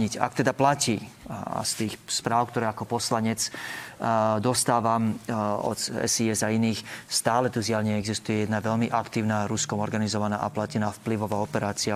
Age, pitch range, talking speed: 30-49, 110-125 Hz, 140 wpm